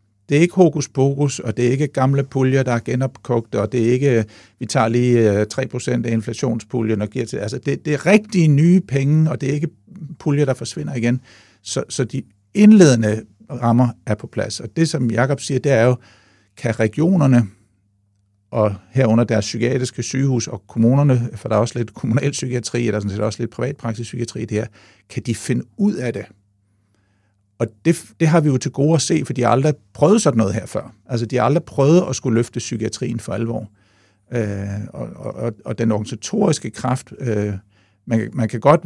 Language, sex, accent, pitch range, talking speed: Danish, male, native, 110-135 Hz, 205 wpm